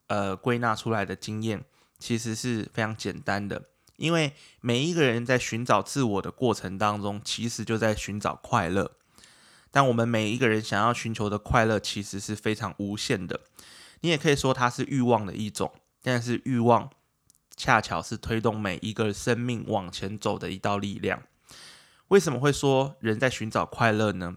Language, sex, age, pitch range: Chinese, male, 20-39, 105-125 Hz